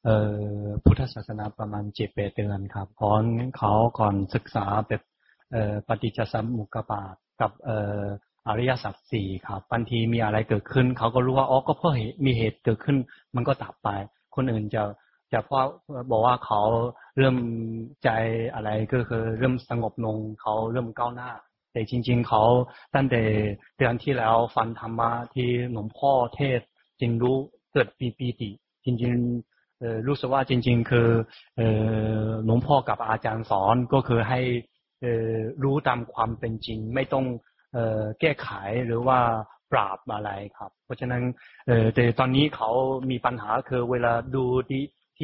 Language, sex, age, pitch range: Chinese, male, 20-39, 110-130 Hz